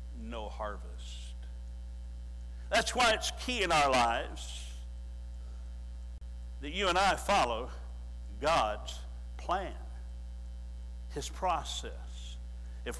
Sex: male